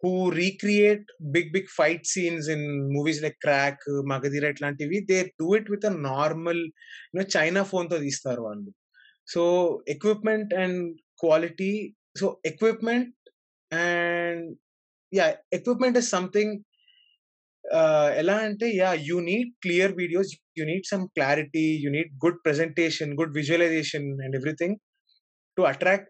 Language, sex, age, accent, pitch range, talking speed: Telugu, male, 20-39, native, 150-195 Hz, 135 wpm